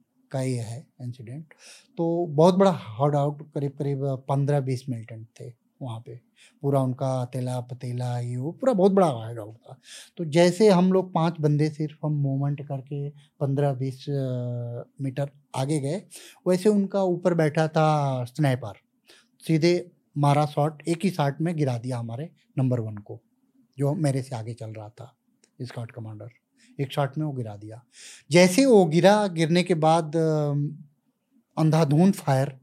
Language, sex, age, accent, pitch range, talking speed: Hindi, male, 30-49, native, 130-175 Hz, 160 wpm